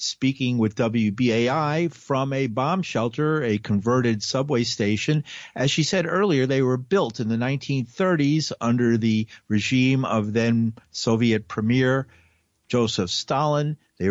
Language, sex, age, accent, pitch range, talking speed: English, male, 50-69, American, 100-130 Hz, 130 wpm